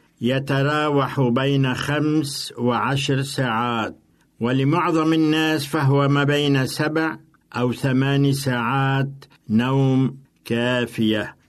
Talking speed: 85 wpm